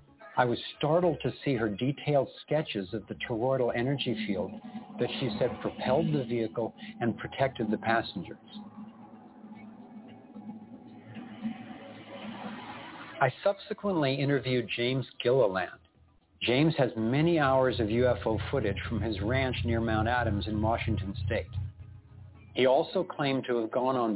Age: 60-79